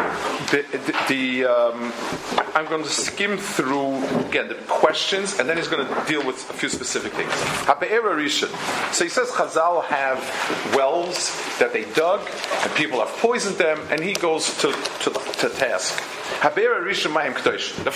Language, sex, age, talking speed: English, male, 40-59, 150 wpm